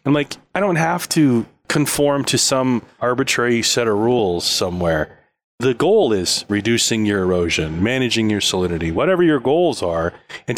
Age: 30-49